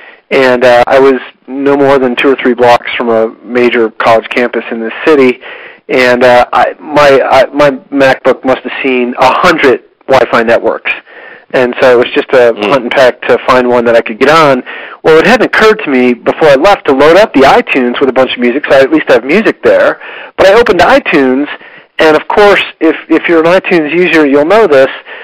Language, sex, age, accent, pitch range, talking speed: English, male, 40-59, American, 130-170 Hz, 220 wpm